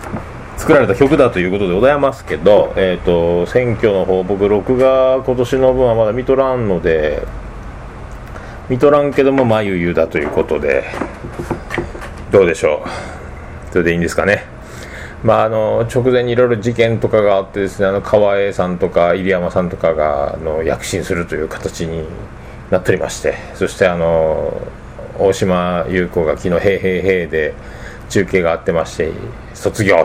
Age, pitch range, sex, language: 40-59, 90-130 Hz, male, Japanese